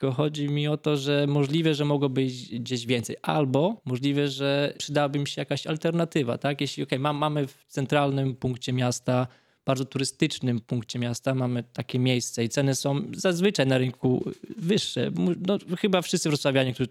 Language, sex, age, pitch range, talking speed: Polish, male, 20-39, 125-155 Hz, 160 wpm